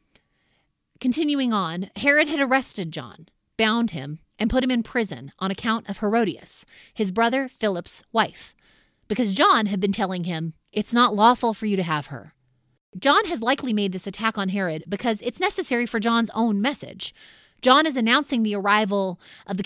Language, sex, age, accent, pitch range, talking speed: English, female, 30-49, American, 190-245 Hz, 175 wpm